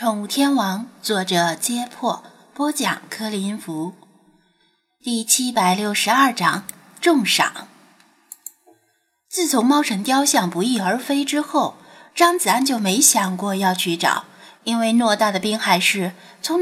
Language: Chinese